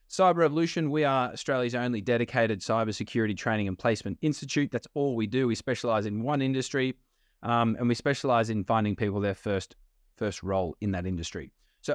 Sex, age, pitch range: male, 20-39, 110-145 Hz